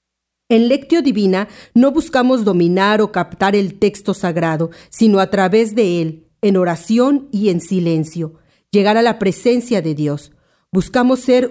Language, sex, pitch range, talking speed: Spanish, female, 175-230 Hz, 150 wpm